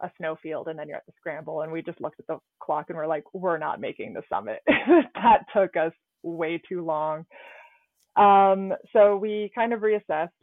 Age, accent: 20-39, American